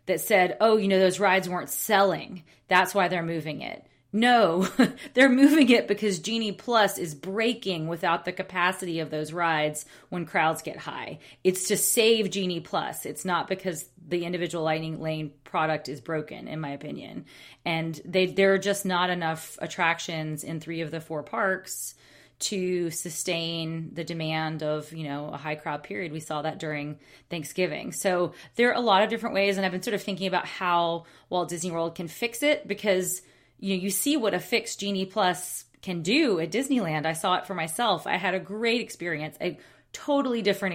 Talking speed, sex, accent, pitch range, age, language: 190 wpm, female, American, 160-195 Hz, 30-49, English